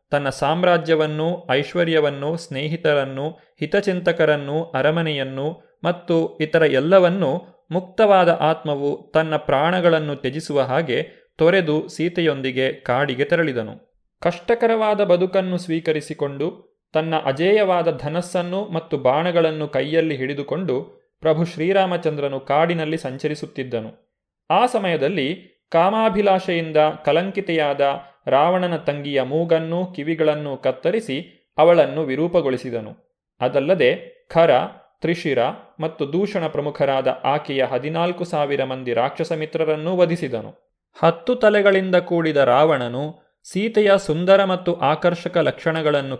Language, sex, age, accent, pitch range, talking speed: Kannada, male, 30-49, native, 145-175 Hz, 85 wpm